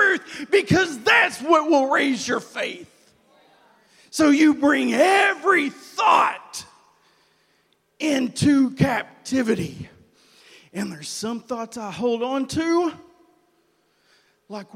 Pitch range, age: 205-295 Hz, 40-59